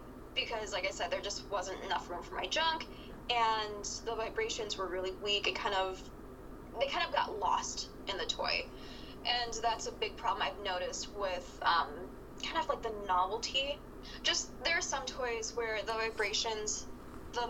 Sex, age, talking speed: female, 10-29, 180 wpm